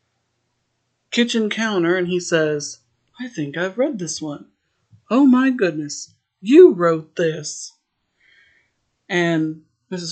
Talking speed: 115 wpm